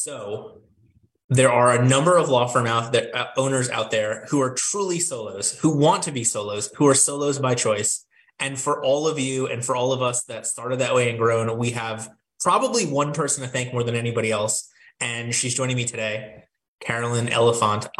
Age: 20-39